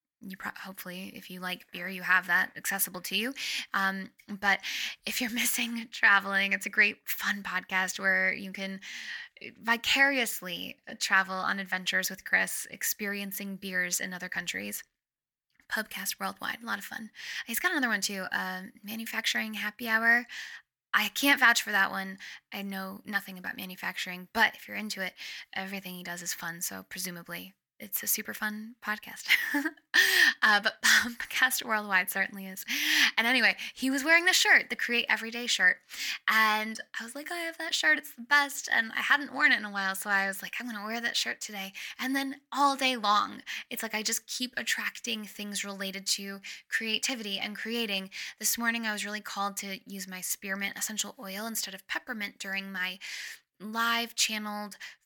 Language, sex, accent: English, female, American